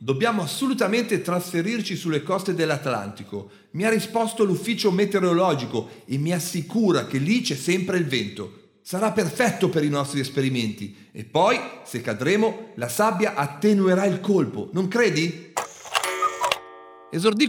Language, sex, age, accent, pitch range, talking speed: Italian, male, 40-59, native, 140-220 Hz, 130 wpm